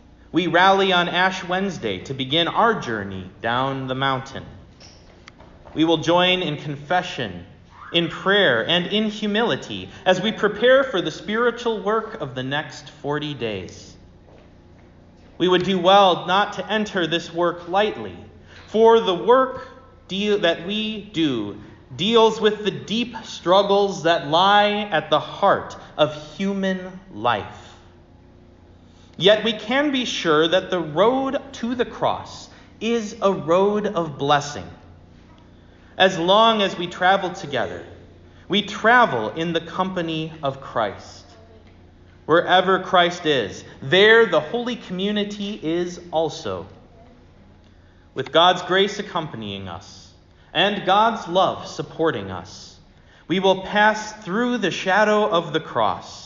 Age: 30-49